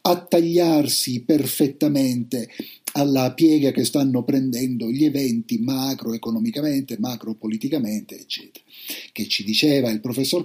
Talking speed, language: 105 wpm, Italian